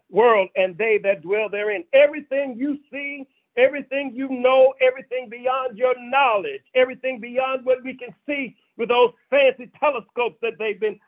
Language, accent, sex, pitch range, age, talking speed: English, American, male, 190-275 Hz, 50-69, 155 wpm